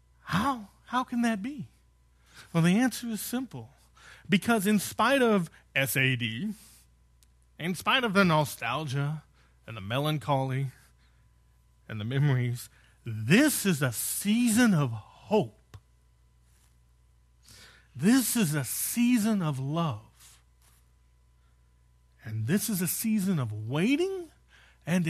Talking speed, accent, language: 110 wpm, American, English